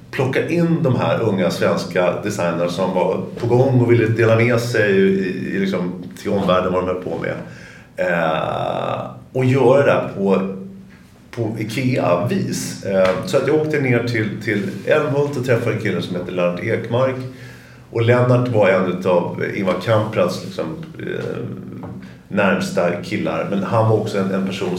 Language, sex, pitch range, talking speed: English, male, 90-115 Hz, 165 wpm